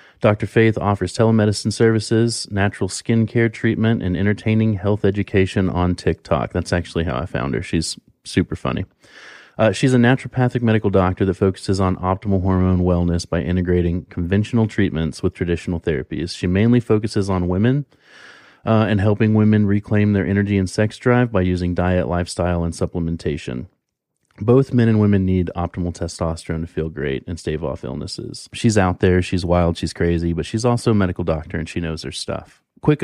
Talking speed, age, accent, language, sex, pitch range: 175 wpm, 30-49, American, English, male, 90-110 Hz